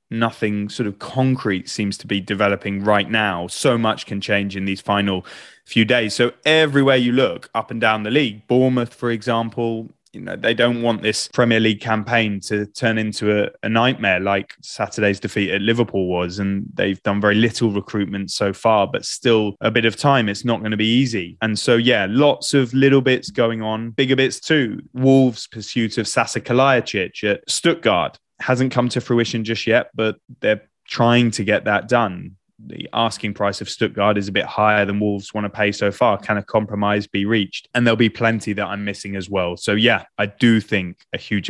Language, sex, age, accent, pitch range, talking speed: English, male, 20-39, British, 100-120 Hz, 205 wpm